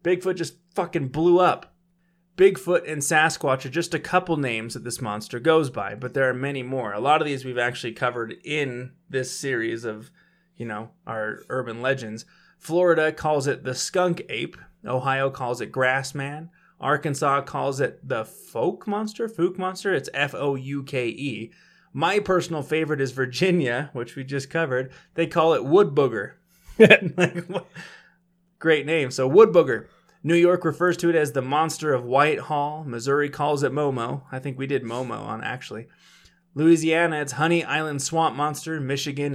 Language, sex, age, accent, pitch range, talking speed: English, male, 20-39, American, 130-170 Hz, 165 wpm